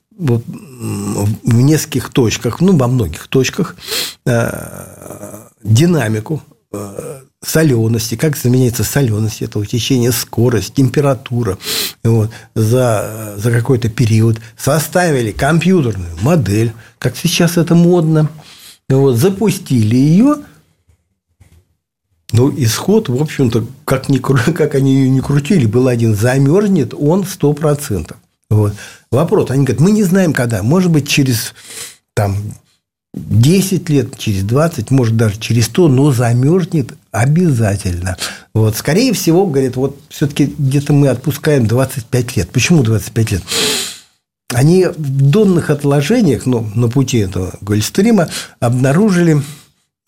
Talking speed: 105 wpm